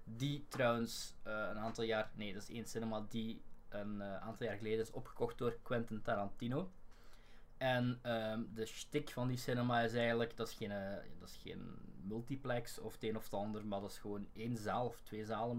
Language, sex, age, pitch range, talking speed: Dutch, male, 20-39, 110-135 Hz, 210 wpm